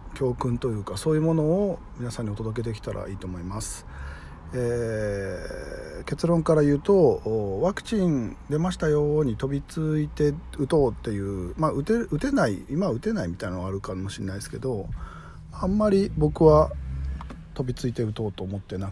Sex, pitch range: male, 100-160 Hz